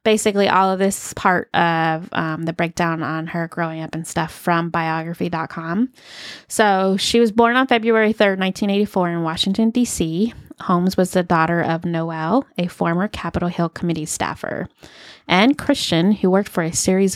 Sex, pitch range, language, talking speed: female, 165-200 Hz, English, 165 wpm